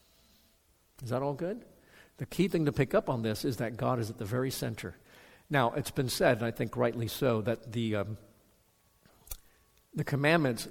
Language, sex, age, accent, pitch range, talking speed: English, male, 50-69, American, 115-140 Hz, 190 wpm